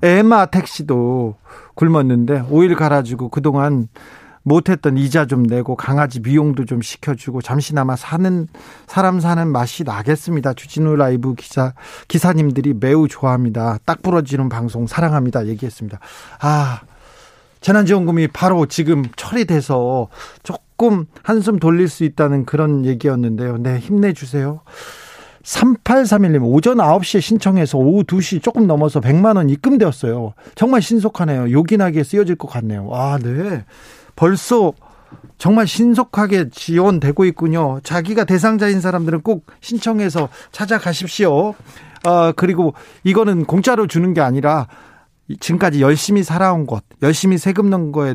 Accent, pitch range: native, 135-185 Hz